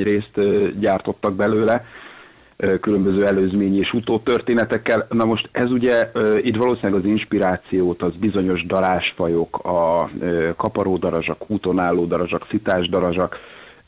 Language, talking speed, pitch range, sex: Hungarian, 100 wpm, 95-110 Hz, male